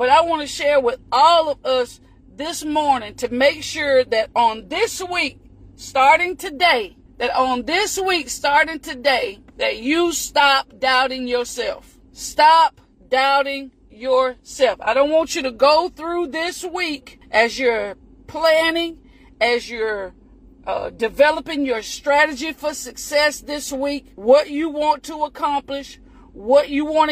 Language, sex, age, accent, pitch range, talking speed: English, female, 40-59, American, 260-320 Hz, 140 wpm